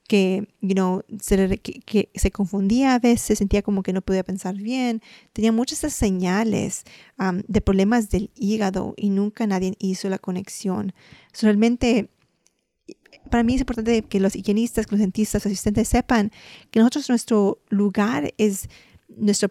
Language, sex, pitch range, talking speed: Spanish, female, 200-225 Hz, 155 wpm